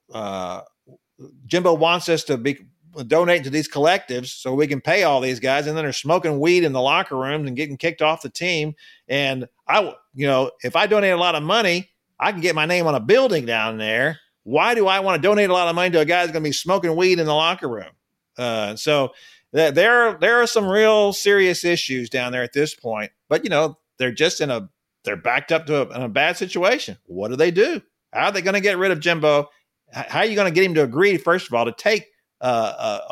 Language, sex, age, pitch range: English, male, 40-59, 140-180 Hz